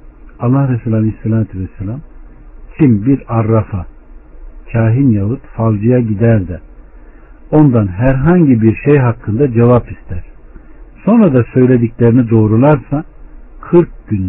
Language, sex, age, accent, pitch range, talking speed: Turkish, male, 60-79, native, 85-120 Hz, 105 wpm